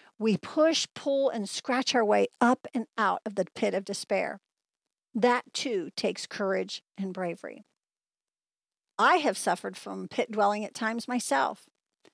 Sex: female